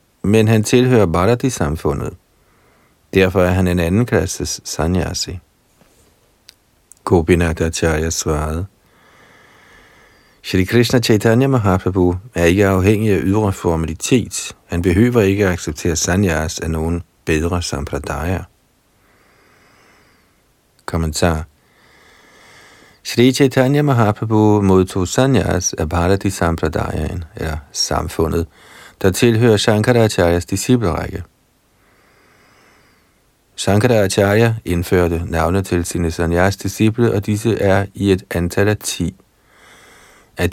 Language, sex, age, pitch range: Danish, male, 50-69, 85-110 Hz